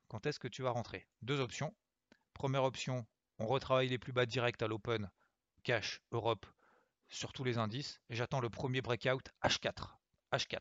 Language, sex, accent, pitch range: French, male, French, 110-135 Hz